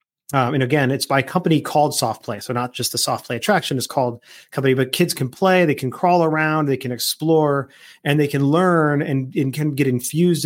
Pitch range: 125-155 Hz